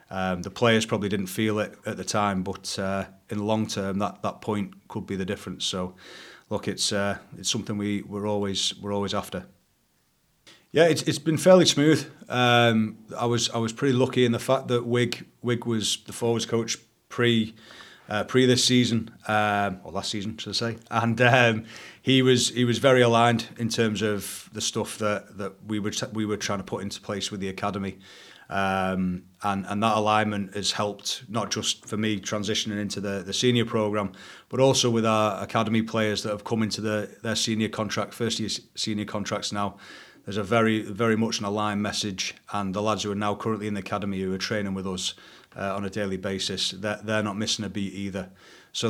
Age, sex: 30-49, male